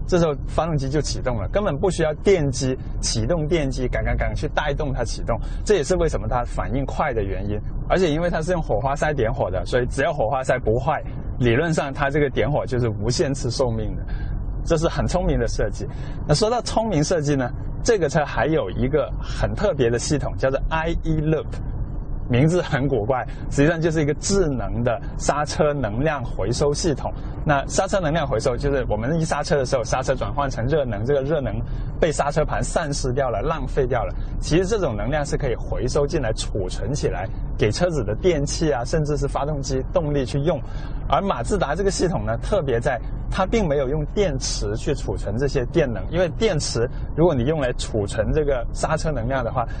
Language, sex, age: Chinese, male, 20-39